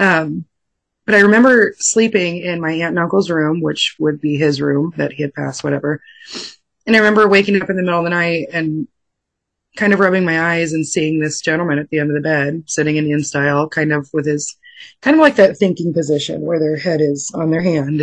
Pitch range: 150-185 Hz